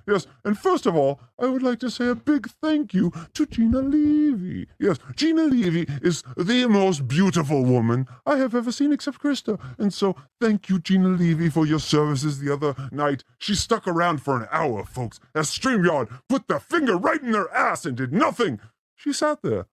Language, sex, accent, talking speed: English, female, American, 200 wpm